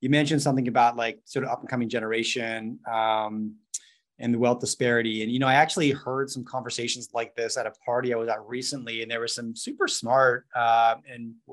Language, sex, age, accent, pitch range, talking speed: English, male, 30-49, American, 115-135 Hz, 205 wpm